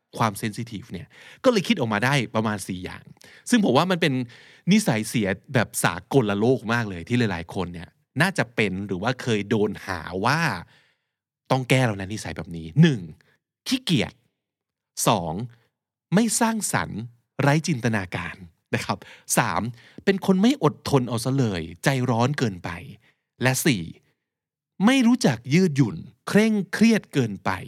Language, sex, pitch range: Thai, male, 105-165 Hz